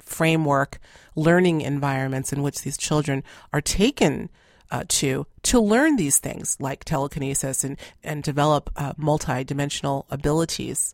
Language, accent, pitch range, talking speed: English, American, 140-155 Hz, 130 wpm